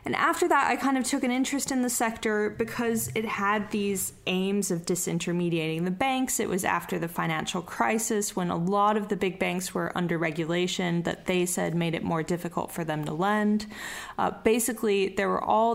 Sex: female